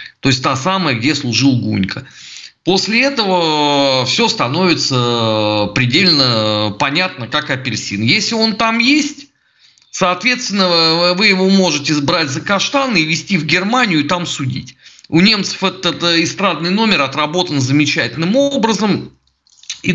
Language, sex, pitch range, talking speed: Russian, male, 135-185 Hz, 125 wpm